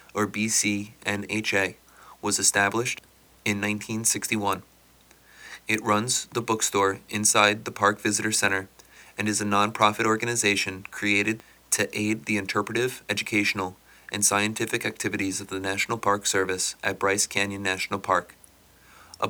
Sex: male